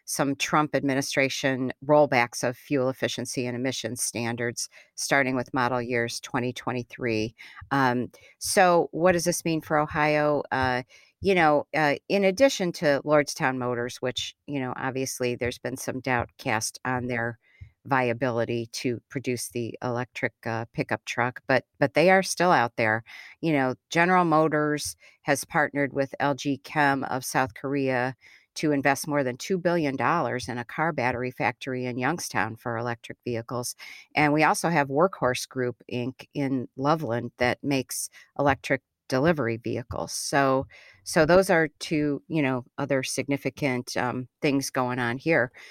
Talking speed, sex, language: 150 wpm, female, English